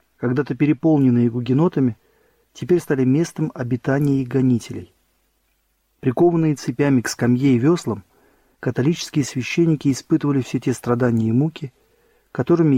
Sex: male